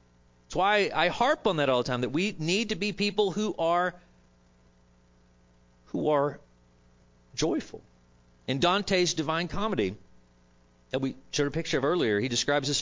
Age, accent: 40-59, American